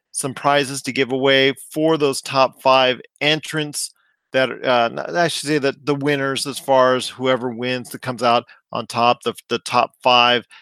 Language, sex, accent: English, male, American